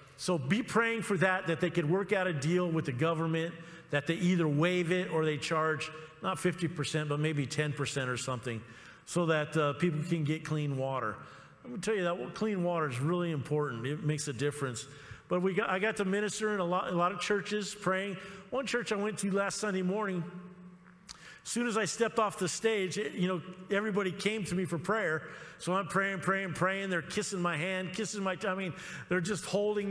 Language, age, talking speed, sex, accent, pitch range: English, 50-69, 215 wpm, male, American, 165-210 Hz